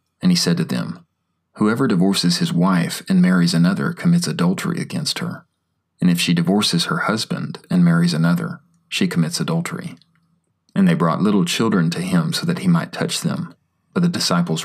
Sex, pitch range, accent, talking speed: male, 170-190 Hz, American, 180 wpm